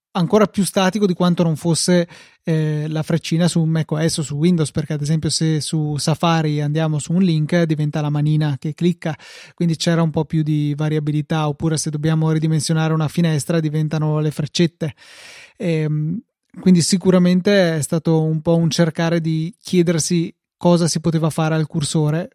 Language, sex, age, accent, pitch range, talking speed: Italian, male, 20-39, native, 155-175 Hz, 170 wpm